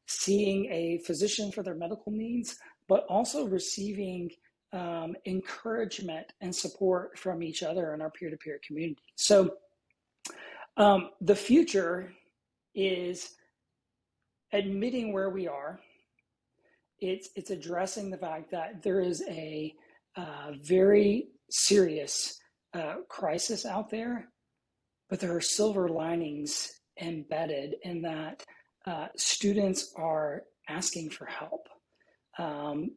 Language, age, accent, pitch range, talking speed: English, 40-59, American, 160-195 Hz, 110 wpm